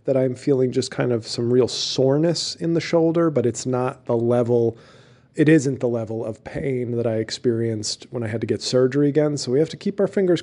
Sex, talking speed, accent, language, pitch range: male, 230 wpm, American, English, 120-140 Hz